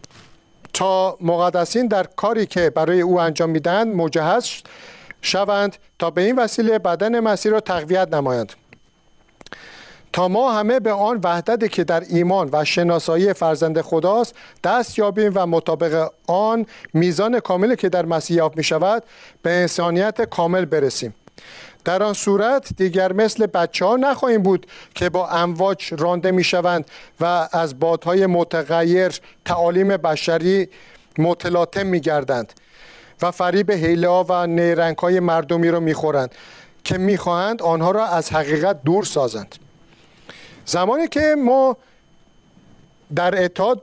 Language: Persian